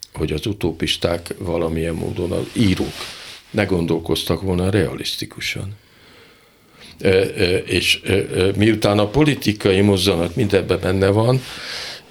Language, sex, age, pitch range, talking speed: Hungarian, male, 50-69, 90-115 Hz, 95 wpm